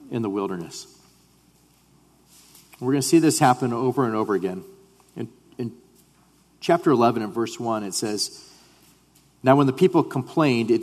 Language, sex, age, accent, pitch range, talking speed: English, male, 40-59, American, 110-140 Hz, 155 wpm